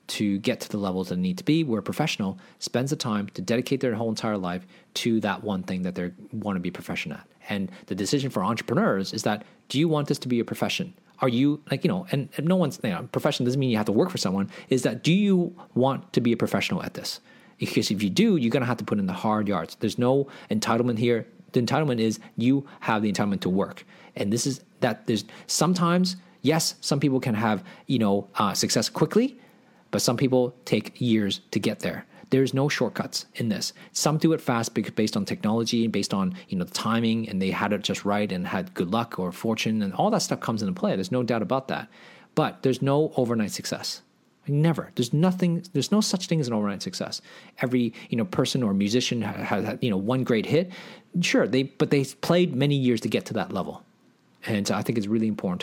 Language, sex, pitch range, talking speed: English, male, 105-155 Hz, 245 wpm